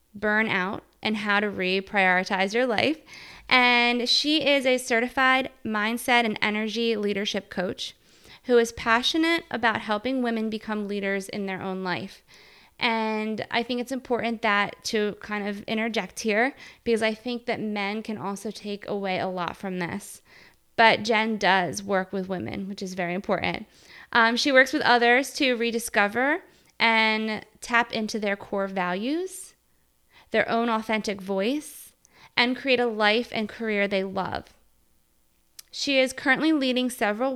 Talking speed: 150 wpm